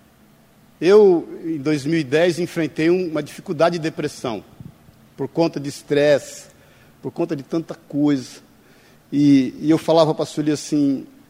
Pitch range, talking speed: 150-180 Hz, 135 wpm